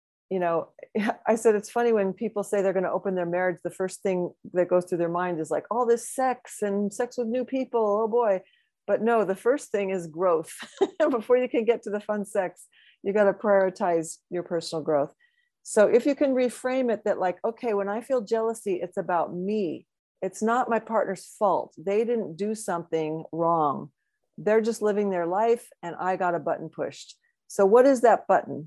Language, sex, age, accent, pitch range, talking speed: English, female, 40-59, American, 175-220 Hz, 205 wpm